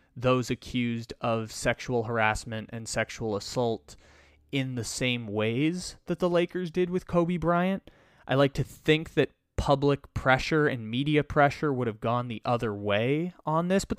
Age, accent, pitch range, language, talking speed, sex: 20-39, American, 120-155 Hz, English, 165 wpm, male